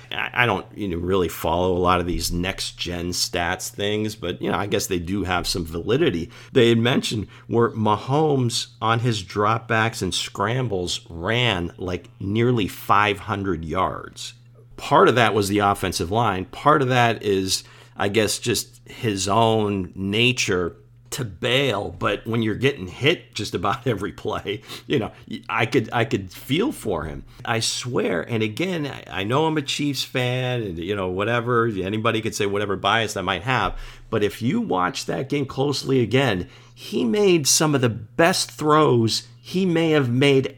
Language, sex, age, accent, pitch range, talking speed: English, male, 50-69, American, 105-130 Hz, 175 wpm